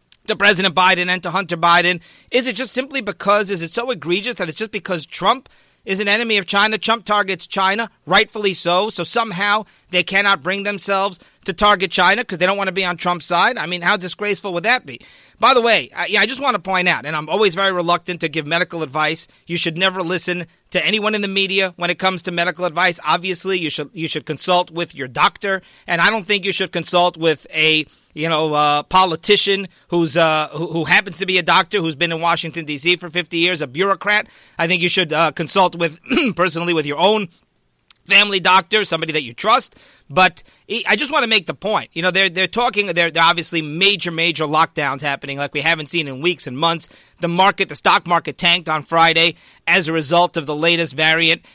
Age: 40-59